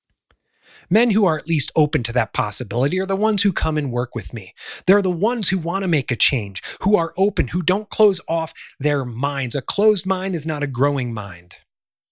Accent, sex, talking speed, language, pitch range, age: American, male, 220 wpm, English, 145-210 Hz, 30-49